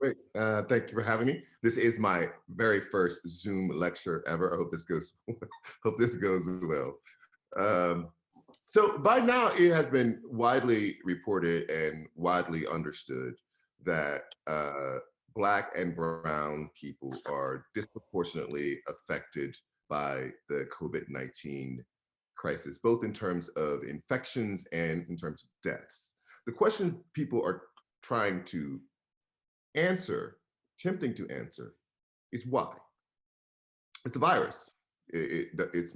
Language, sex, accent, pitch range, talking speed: English, male, American, 80-120 Hz, 120 wpm